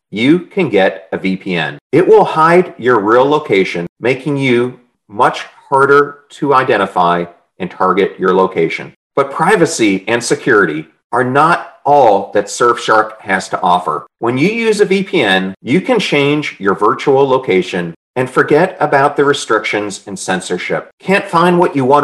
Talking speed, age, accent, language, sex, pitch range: 150 wpm, 40-59, American, English, male, 95-150 Hz